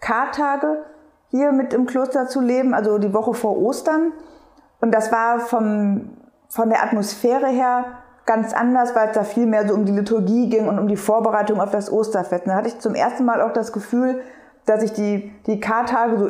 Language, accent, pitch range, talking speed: German, German, 210-250 Hz, 200 wpm